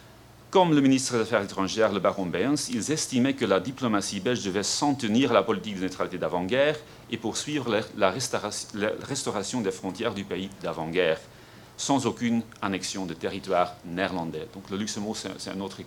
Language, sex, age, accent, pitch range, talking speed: French, male, 40-59, French, 100-130 Hz, 170 wpm